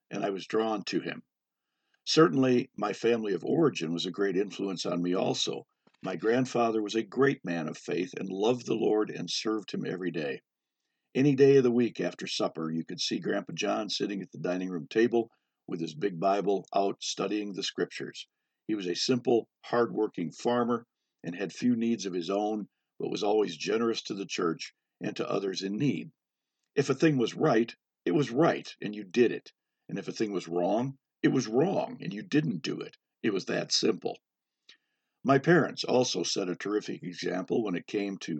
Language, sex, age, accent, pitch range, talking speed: English, male, 50-69, American, 95-125 Hz, 200 wpm